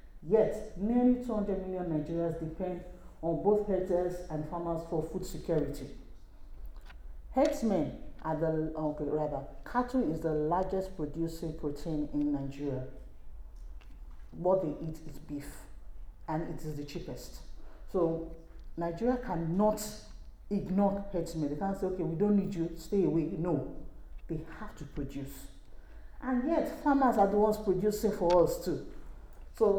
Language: English